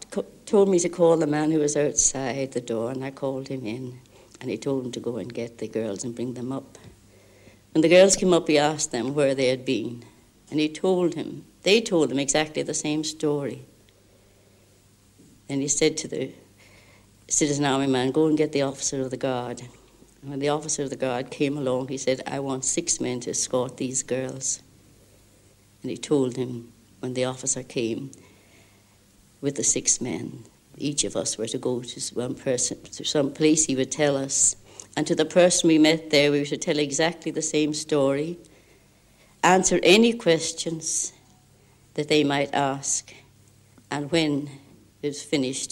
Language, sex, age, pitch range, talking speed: English, female, 60-79, 115-150 Hz, 190 wpm